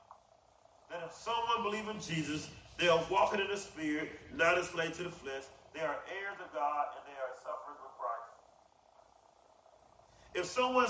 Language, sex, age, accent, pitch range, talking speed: English, male, 40-59, American, 145-215 Hz, 165 wpm